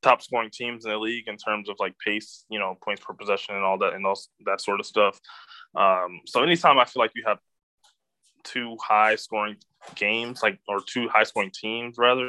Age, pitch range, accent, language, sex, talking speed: 20-39, 100-125 Hz, American, English, male, 215 wpm